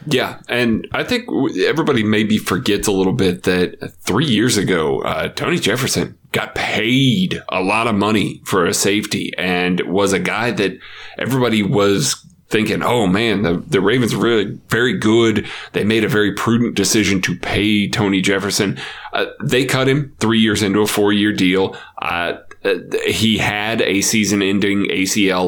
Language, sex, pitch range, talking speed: English, male, 100-120 Hz, 165 wpm